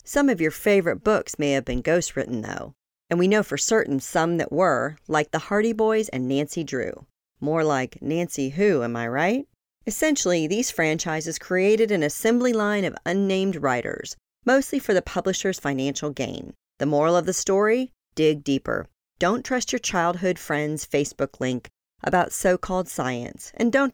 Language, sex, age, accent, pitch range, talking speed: English, female, 40-59, American, 145-205 Hz, 170 wpm